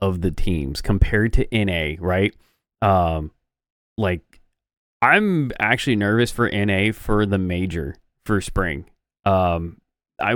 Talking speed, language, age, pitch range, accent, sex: 120 wpm, English, 20-39, 95-110 Hz, American, male